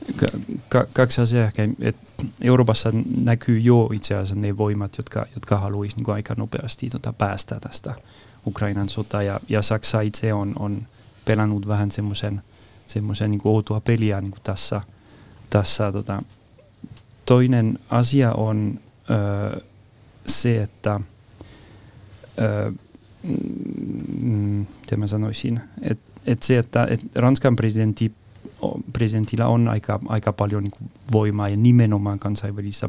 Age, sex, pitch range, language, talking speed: 30-49, male, 105-115 Hz, Finnish, 115 wpm